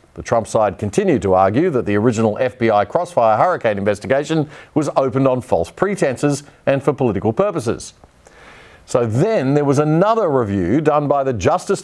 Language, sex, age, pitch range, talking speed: English, male, 50-69, 105-140 Hz, 160 wpm